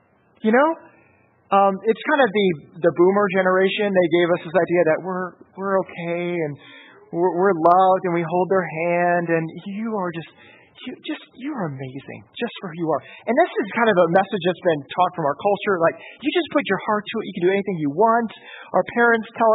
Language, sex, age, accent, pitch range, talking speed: English, male, 30-49, American, 185-265 Hz, 220 wpm